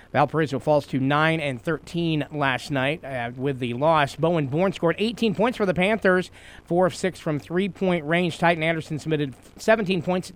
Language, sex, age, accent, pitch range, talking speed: English, male, 40-59, American, 130-175 Hz, 180 wpm